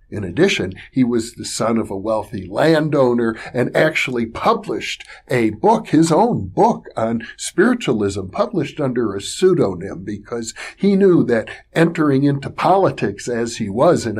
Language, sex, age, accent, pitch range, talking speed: English, male, 60-79, American, 105-160 Hz, 150 wpm